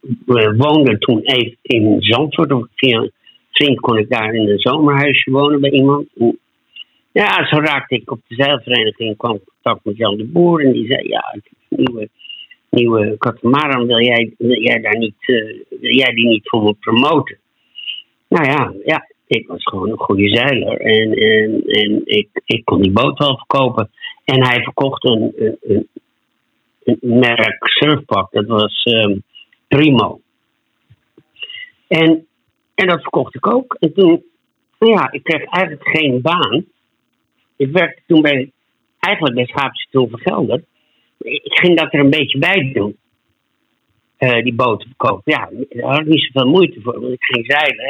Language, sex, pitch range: Dutch, male, 115-150 Hz